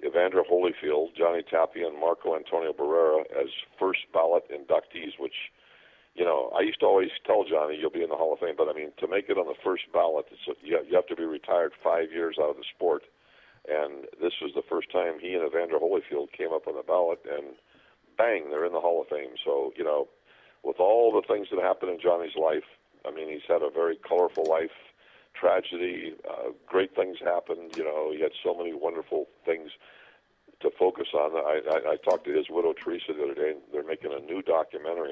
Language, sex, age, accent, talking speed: English, male, 50-69, American, 210 wpm